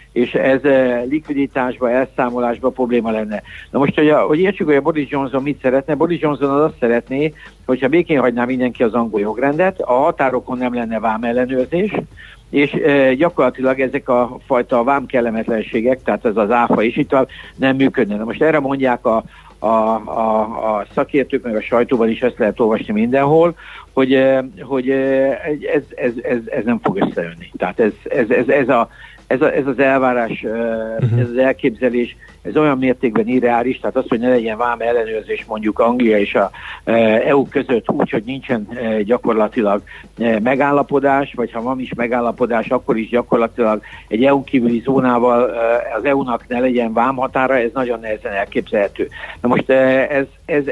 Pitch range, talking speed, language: 120-140 Hz, 165 wpm, Hungarian